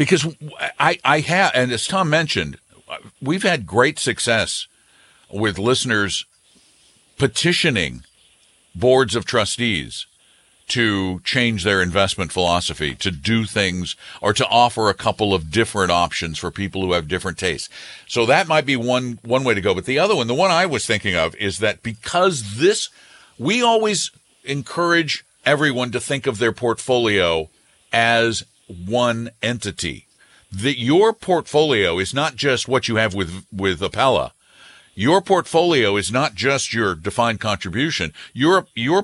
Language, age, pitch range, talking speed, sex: English, 60-79, 100-145 Hz, 150 wpm, male